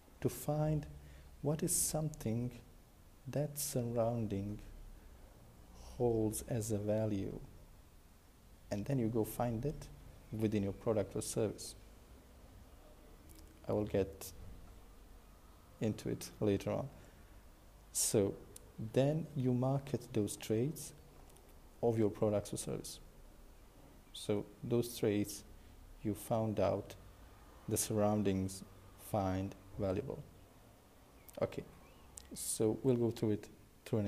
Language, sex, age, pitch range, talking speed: English, male, 50-69, 100-125 Hz, 100 wpm